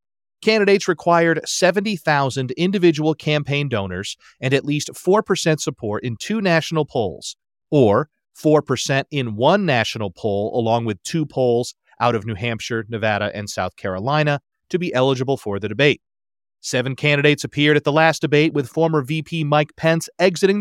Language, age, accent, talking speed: English, 40-59, American, 150 wpm